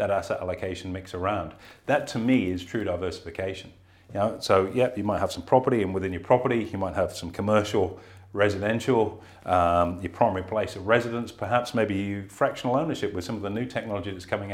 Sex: male